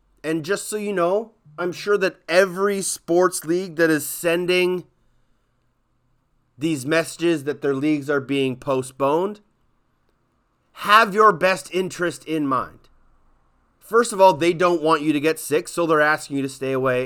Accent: American